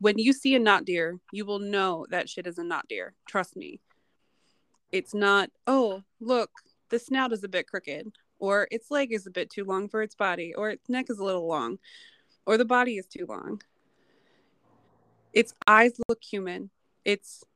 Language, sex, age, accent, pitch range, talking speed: English, female, 20-39, American, 190-230 Hz, 190 wpm